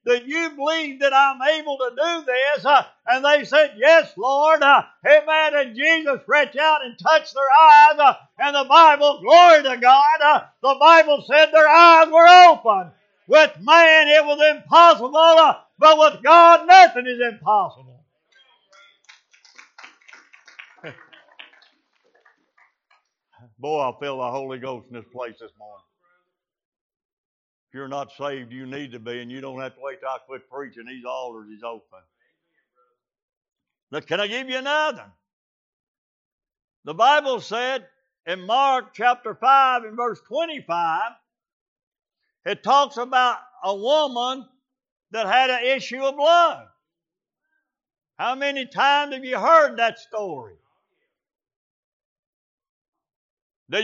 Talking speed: 135 wpm